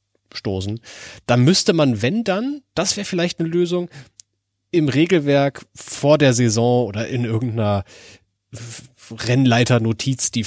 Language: German